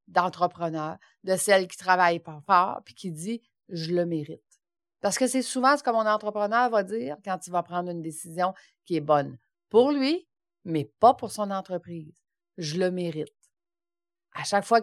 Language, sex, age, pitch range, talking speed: French, female, 40-59, 165-230 Hz, 180 wpm